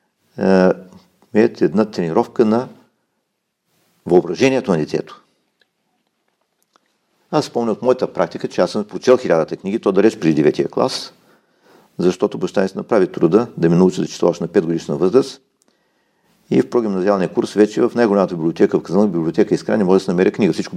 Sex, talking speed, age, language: male, 165 wpm, 50-69, Bulgarian